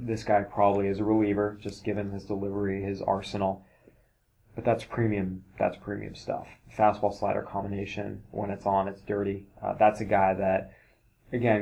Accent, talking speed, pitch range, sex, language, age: American, 165 wpm, 100-110 Hz, male, English, 20-39